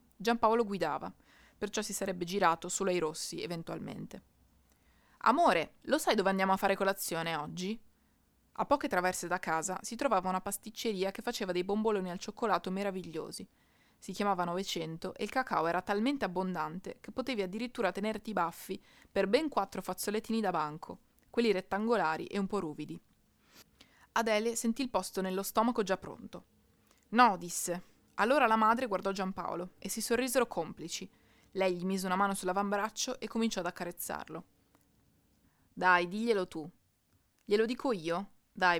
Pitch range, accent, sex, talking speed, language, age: 180-225 Hz, native, female, 150 wpm, Italian, 20-39